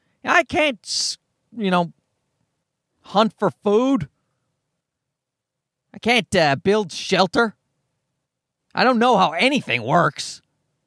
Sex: male